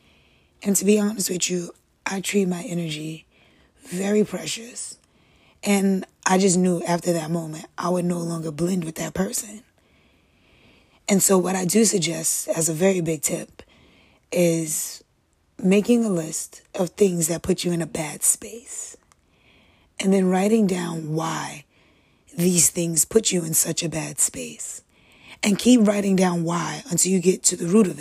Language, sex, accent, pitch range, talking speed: English, female, American, 165-195 Hz, 165 wpm